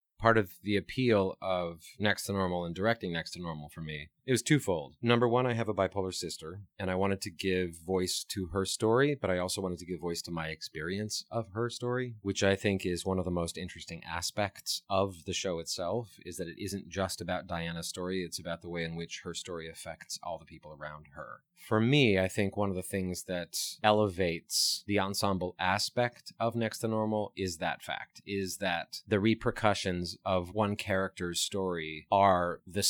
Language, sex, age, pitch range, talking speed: English, male, 30-49, 90-105 Hz, 205 wpm